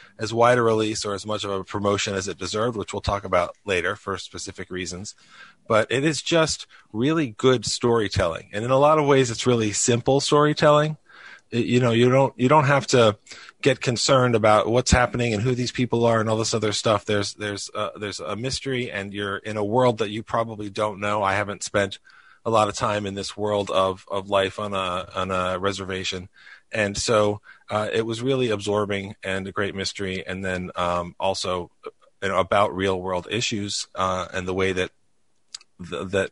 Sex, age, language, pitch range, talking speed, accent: male, 30-49, English, 95-115 Hz, 205 wpm, American